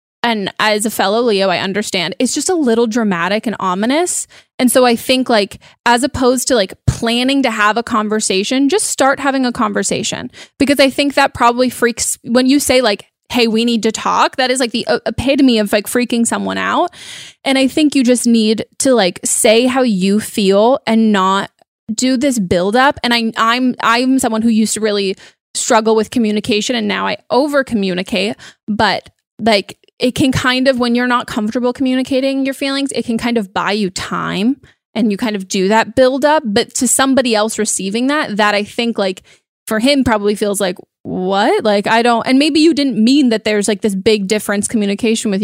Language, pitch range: English, 215-260 Hz